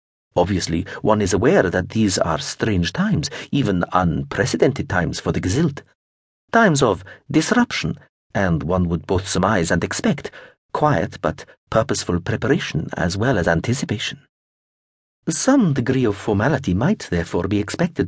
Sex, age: male, 50-69